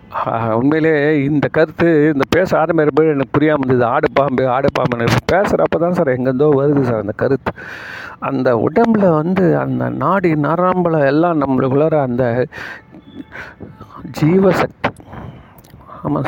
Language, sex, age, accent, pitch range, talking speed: Tamil, male, 50-69, native, 120-155 Hz, 120 wpm